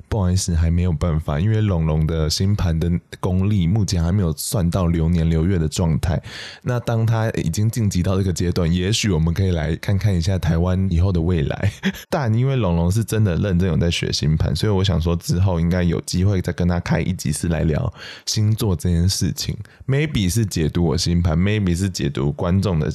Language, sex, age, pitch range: Chinese, male, 20-39, 85-110 Hz